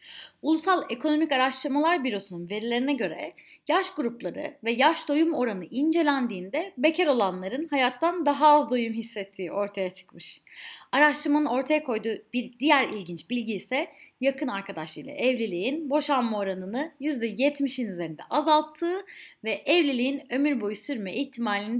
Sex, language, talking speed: female, Turkish, 120 wpm